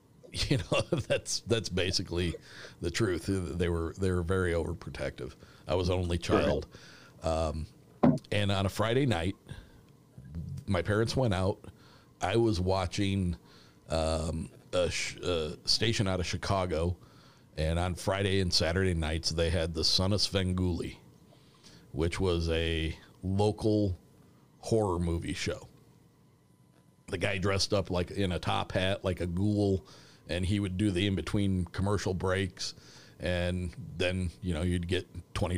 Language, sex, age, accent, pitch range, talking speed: English, male, 50-69, American, 85-100 Hz, 145 wpm